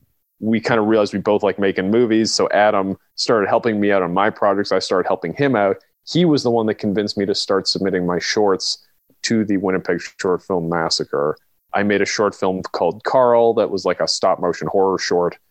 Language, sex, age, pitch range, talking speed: English, male, 30-49, 95-115 Hz, 215 wpm